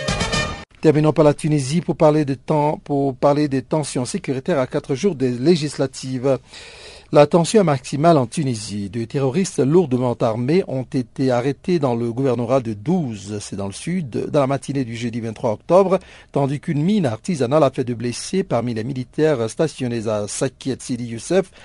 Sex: male